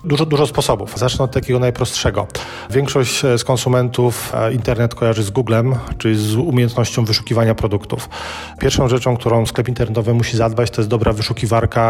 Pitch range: 110-120 Hz